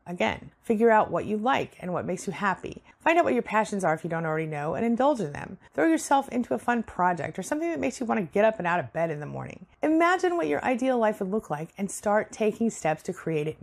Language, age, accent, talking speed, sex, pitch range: English, 30-49, American, 275 wpm, female, 165-230 Hz